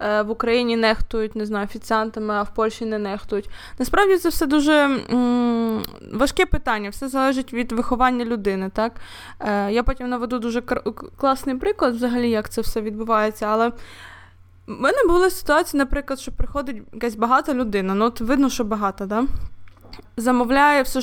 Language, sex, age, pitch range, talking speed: Ukrainian, female, 20-39, 215-260 Hz, 150 wpm